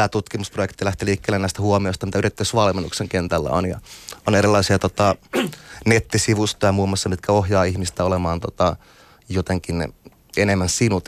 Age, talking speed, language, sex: 30-49, 135 wpm, Finnish, male